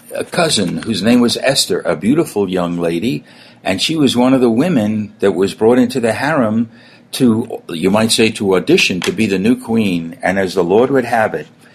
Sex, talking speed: male, 210 wpm